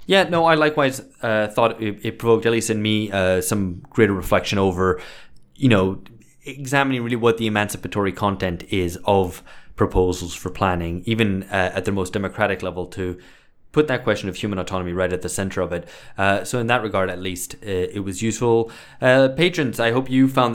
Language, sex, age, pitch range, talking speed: English, male, 20-39, 95-115 Hz, 200 wpm